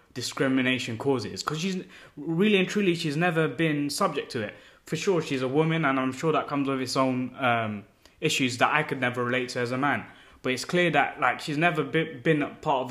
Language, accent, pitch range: English, British, 130-165 Hz